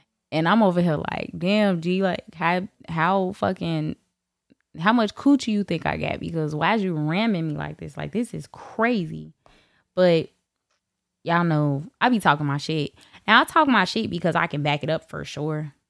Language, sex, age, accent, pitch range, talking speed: English, female, 10-29, American, 140-180 Hz, 195 wpm